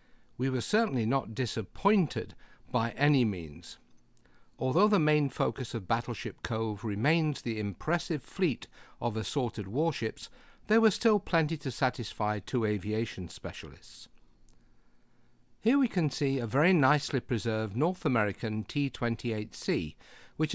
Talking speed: 125 wpm